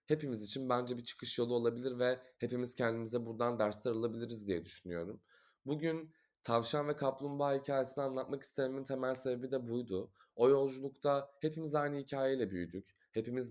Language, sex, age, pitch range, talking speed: Turkish, male, 20-39, 115-140 Hz, 145 wpm